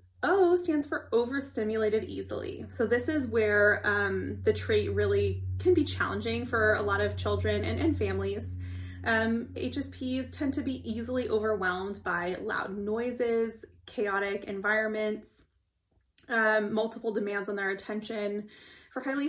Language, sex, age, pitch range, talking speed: English, female, 20-39, 205-245 Hz, 135 wpm